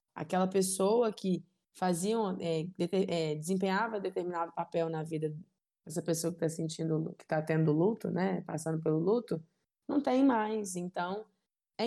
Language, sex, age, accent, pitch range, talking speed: Portuguese, female, 20-39, Brazilian, 170-225 Hz, 130 wpm